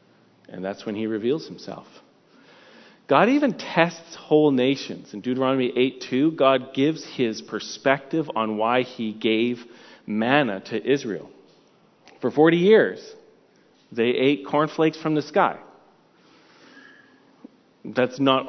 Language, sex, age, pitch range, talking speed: English, male, 40-59, 115-160 Hz, 115 wpm